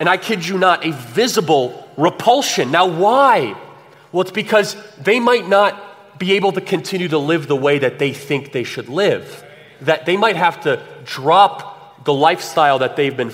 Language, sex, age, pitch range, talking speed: English, male, 30-49, 145-190 Hz, 185 wpm